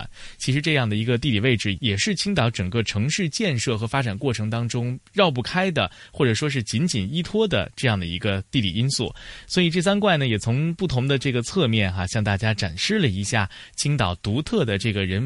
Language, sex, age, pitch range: Chinese, male, 20-39, 105-155 Hz